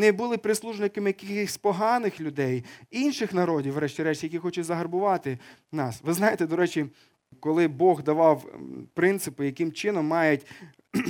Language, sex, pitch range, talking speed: Ukrainian, male, 150-200 Hz, 130 wpm